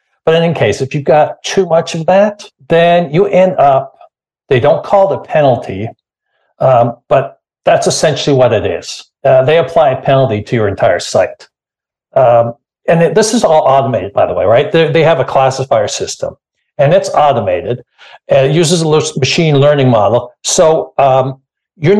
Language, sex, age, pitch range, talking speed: English, male, 60-79, 130-165 Hz, 185 wpm